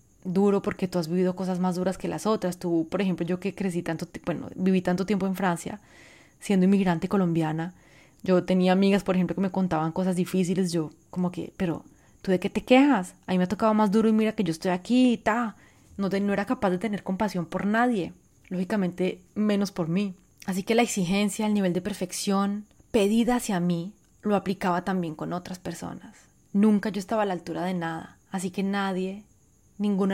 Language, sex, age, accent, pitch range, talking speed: Spanish, female, 20-39, Colombian, 175-200 Hz, 205 wpm